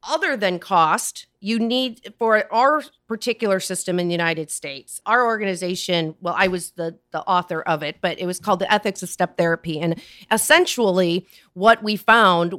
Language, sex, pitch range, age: English, female, 170-225 Hz, 40-59